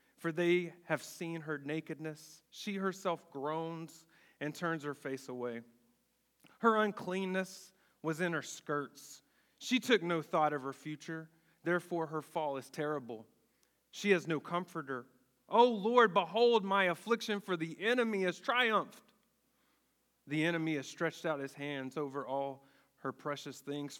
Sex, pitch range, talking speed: male, 145-195 Hz, 145 wpm